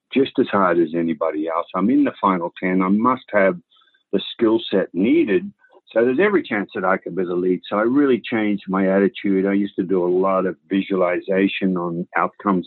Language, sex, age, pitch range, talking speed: English, male, 50-69, 95-120 Hz, 210 wpm